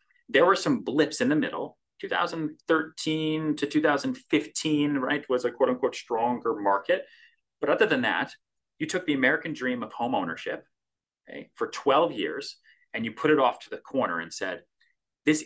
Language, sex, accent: English, male, American